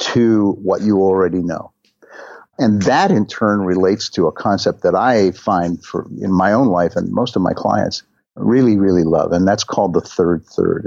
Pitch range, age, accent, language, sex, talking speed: 95-135 Hz, 50-69, American, English, male, 190 wpm